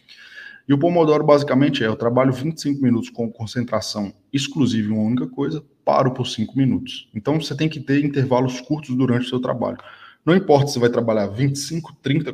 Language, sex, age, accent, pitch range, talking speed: Portuguese, male, 20-39, Brazilian, 115-150 Hz, 190 wpm